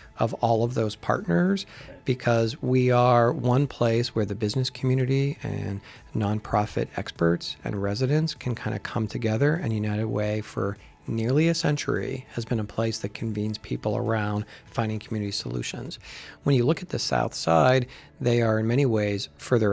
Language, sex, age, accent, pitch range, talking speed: English, male, 40-59, American, 105-125 Hz, 165 wpm